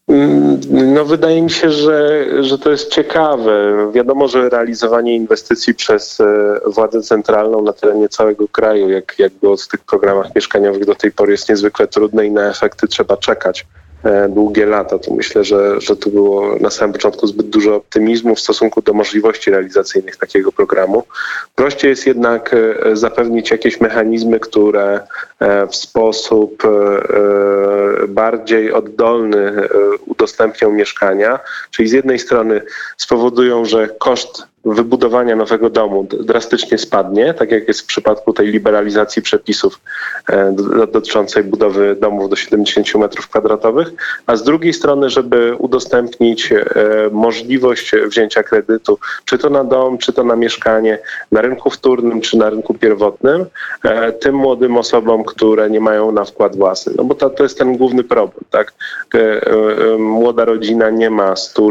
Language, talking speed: Polish, 140 wpm